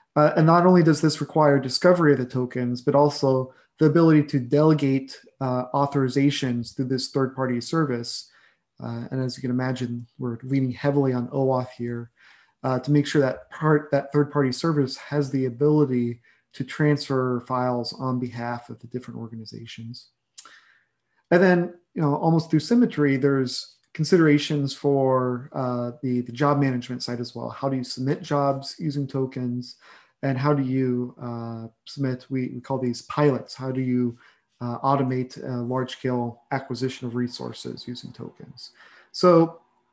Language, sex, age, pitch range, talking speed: English, male, 30-49, 125-145 Hz, 155 wpm